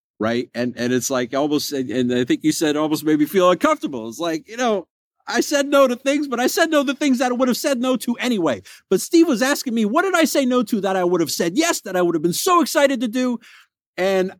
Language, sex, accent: English, male, American